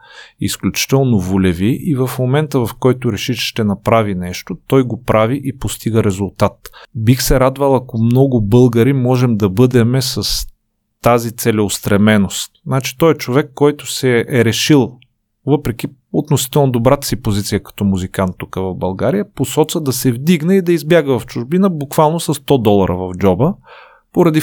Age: 30-49